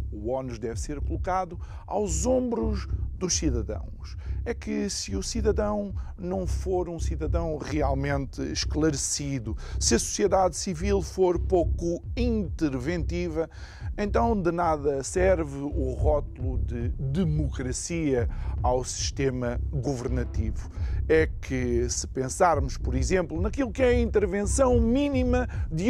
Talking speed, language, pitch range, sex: 120 wpm, Portuguese, 85-140 Hz, male